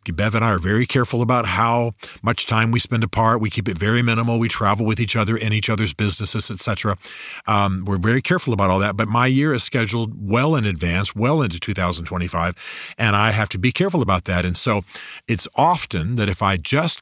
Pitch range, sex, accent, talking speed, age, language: 100-120 Hz, male, American, 220 wpm, 40-59, English